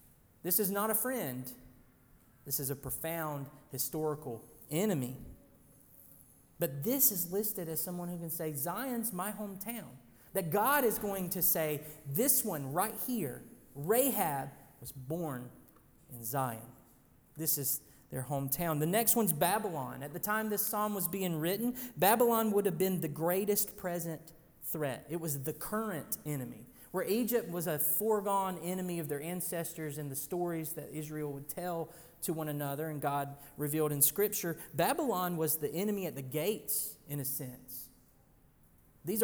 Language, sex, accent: English, male, American